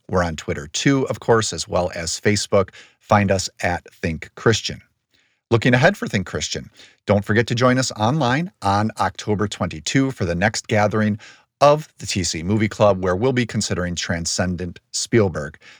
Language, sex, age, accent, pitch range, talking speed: English, male, 50-69, American, 95-125 Hz, 165 wpm